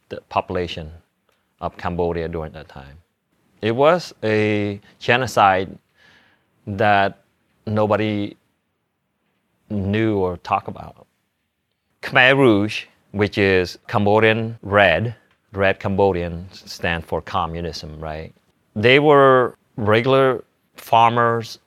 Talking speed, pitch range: 90 wpm, 90-110 Hz